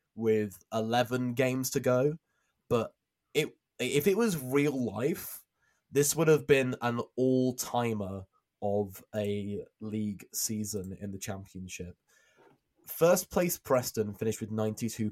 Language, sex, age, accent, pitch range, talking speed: English, male, 20-39, British, 105-135 Hz, 125 wpm